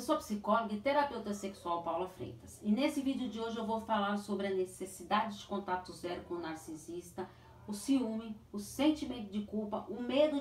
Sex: female